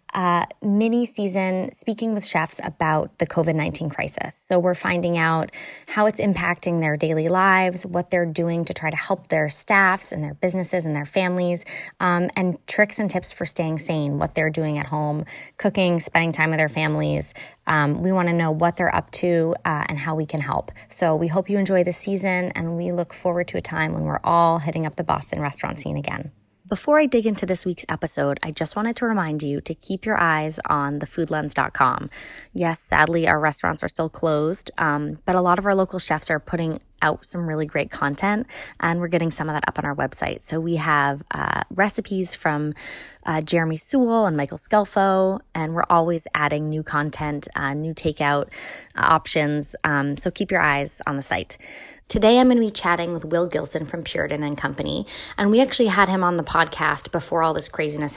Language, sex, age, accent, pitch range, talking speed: English, female, 20-39, American, 155-190 Hz, 205 wpm